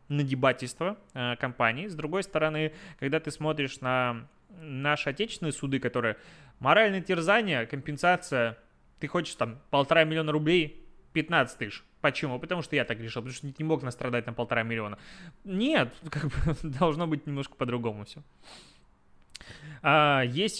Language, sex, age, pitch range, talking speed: Russian, male, 20-39, 125-160 Hz, 145 wpm